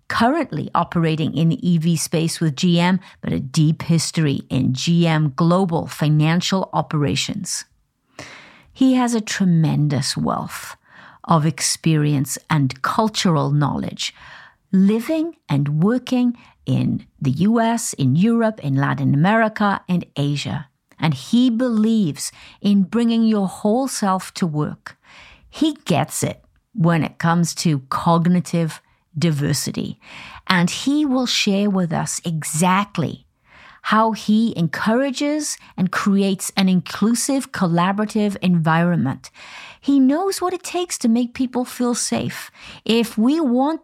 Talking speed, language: 120 wpm, English